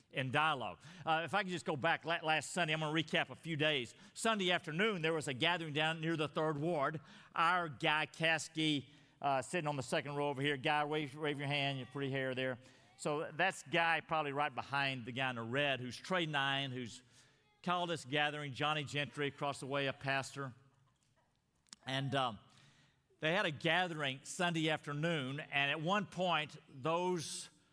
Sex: male